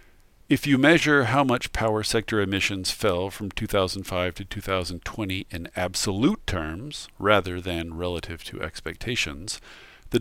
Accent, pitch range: American, 90-120 Hz